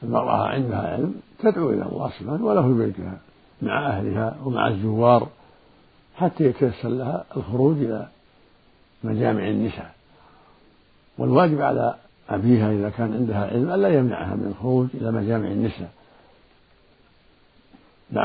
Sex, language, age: male, Arabic, 60-79